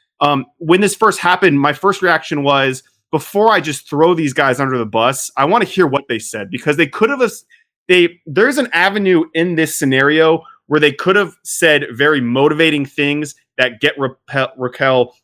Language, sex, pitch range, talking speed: English, male, 125-165 Hz, 190 wpm